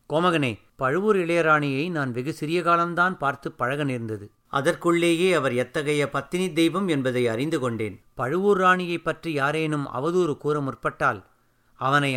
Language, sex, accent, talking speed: Tamil, male, native, 115 wpm